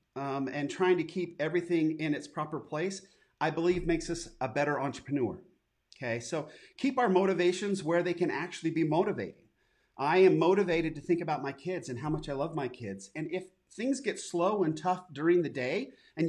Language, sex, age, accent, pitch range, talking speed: English, male, 40-59, American, 145-190 Hz, 200 wpm